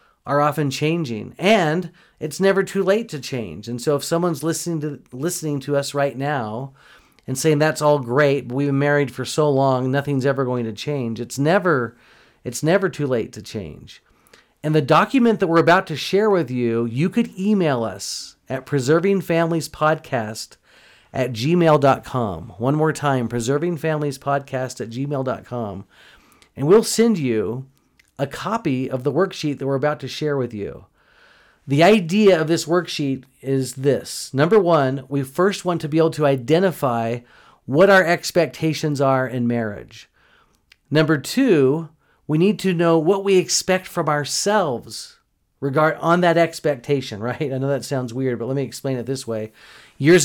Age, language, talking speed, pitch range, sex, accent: 40-59, English, 165 wpm, 130-165 Hz, male, American